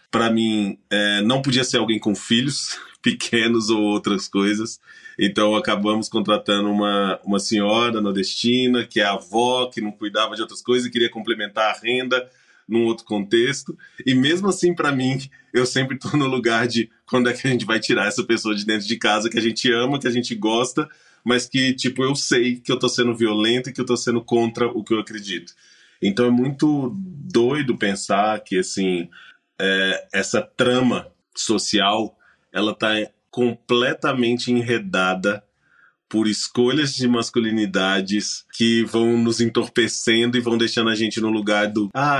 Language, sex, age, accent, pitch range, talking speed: Portuguese, male, 20-39, Brazilian, 105-125 Hz, 175 wpm